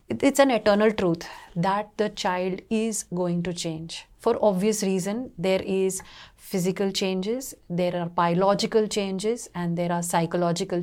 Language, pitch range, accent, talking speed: English, 185-245 Hz, Indian, 145 wpm